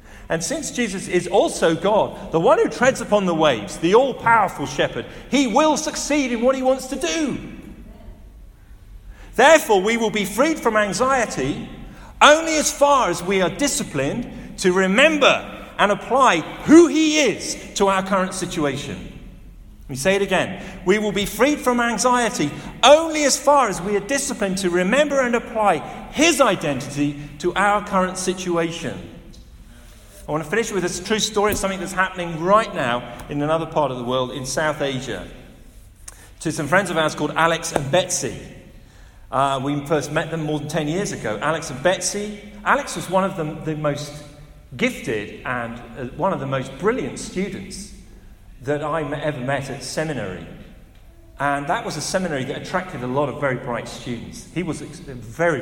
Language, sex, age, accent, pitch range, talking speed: English, male, 40-59, British, 150-230 Hz, 175 wpm